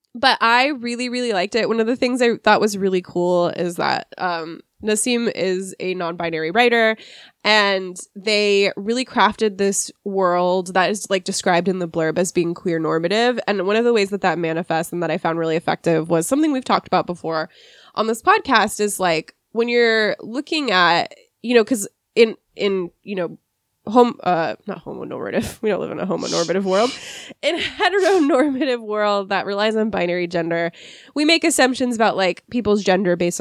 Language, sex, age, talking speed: English, female, 20-39, 185 wpm